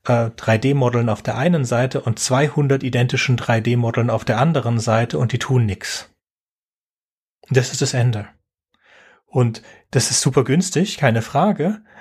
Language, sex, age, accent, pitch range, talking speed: German, male, 30-49, German, 120-145 Hz, 140 wpm